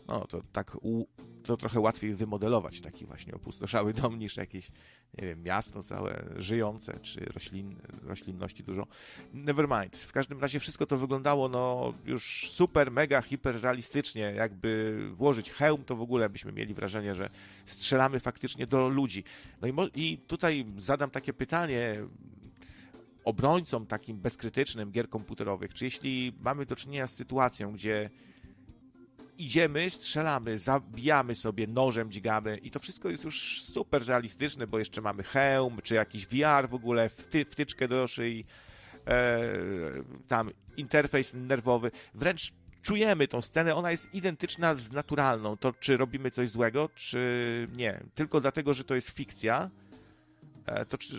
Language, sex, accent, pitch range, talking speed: Polish, male, native, 110-140 Hz, 145 wpm